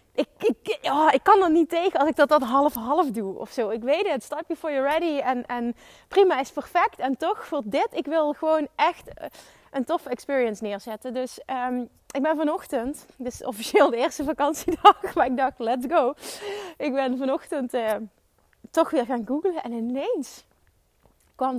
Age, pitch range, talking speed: 20-39, 225-305 Hz, 185 wpm